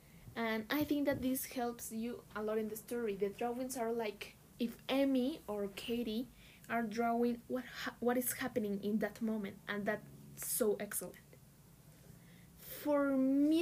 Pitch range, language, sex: 205-255 Hz, English, female